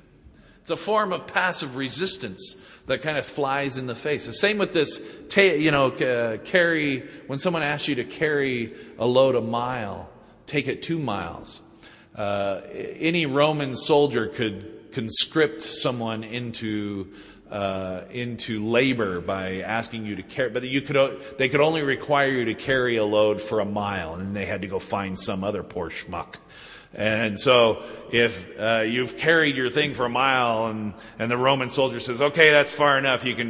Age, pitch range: 40-59, 110-150 Hz